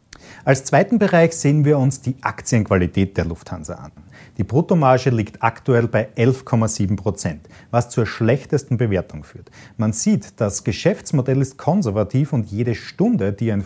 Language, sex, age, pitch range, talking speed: German, male, 40-59, 100-145 Hz, 150 wpm